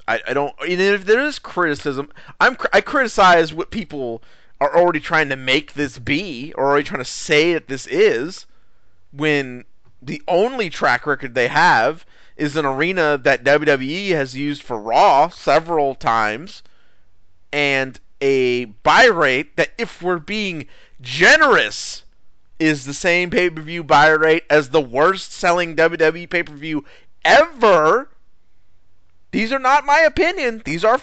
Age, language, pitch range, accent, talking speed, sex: 30-49, English, 110-170 Hz, American, 145 wpm, male